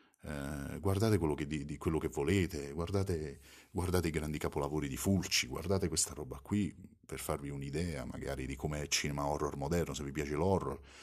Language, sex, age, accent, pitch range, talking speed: Italian, male, 40-59, native, 75-95 Hz, 185 wpm